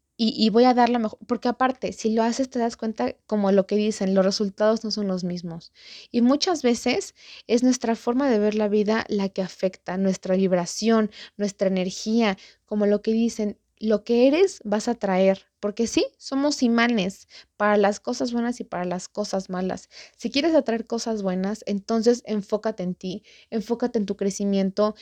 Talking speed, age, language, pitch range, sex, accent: 185 wpm, 20-39, Spanish, 190-235 Hz, female, Mexican